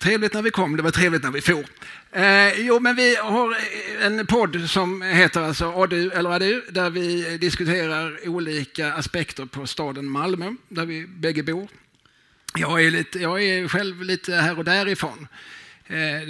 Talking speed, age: 175 wpm, 30-49